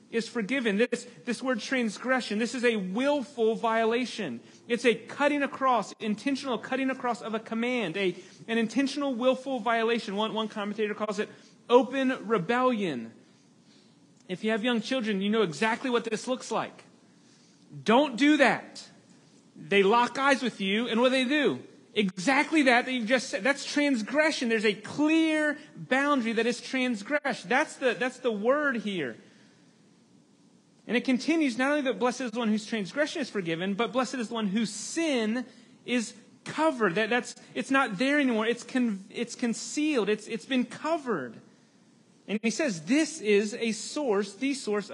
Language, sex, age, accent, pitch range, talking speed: English, male, 40-59, American, 220-265 Hz, 165 wpm